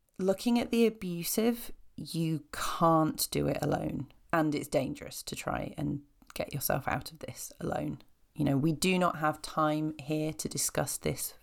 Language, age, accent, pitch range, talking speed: English, 30-49, British, 145-180 Hz, 170 wpm